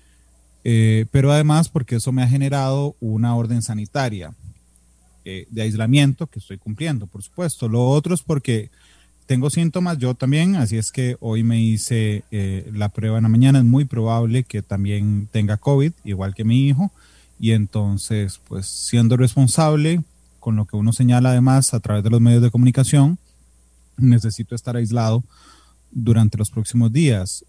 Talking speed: 165 wpm